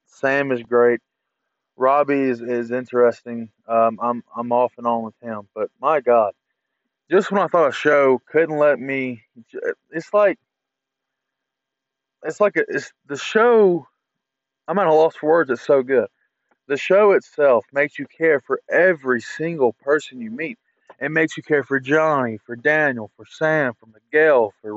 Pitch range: 120-155 Hz